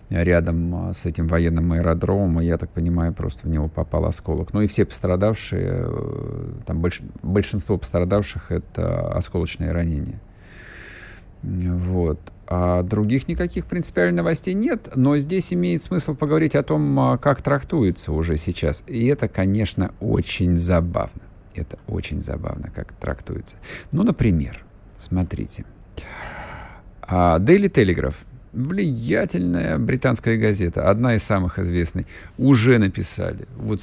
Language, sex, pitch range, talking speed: Russian, male, 85-115 Hz, 120 wpm